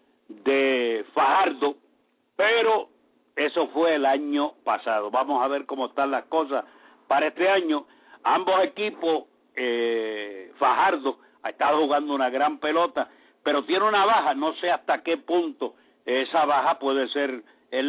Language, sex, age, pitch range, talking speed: English, male, 60-79, 135-175 Hz, 140 wpm